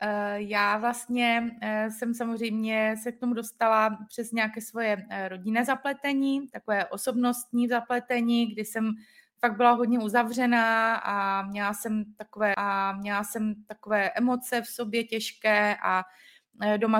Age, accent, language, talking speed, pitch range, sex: 20-39, native, Czech, 115 wpm, 210-240 Hz, female